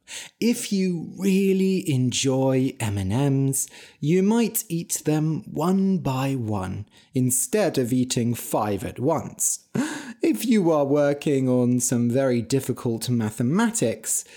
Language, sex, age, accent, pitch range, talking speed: English, male, 30-49, British, 120-185 Hz, 115 wpm